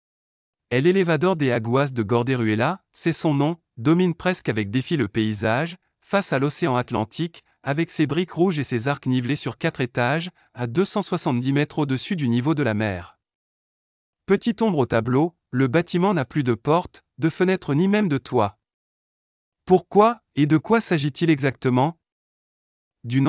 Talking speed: 160 wpm